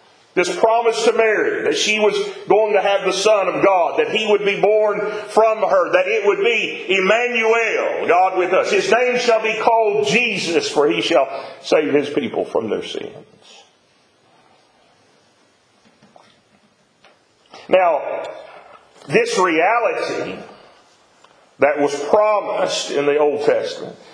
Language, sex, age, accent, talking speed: English, male, 40-59, American, 135 wpm